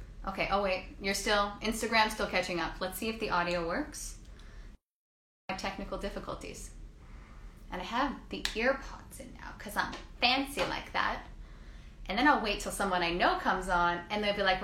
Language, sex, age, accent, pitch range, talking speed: English, female, 10-29, American, 185-255 Hz, 185 wpm